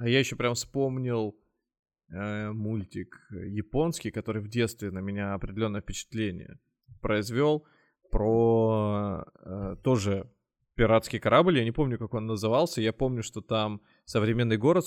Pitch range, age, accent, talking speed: 110-125 Hz, 20-39, native, 135 wpm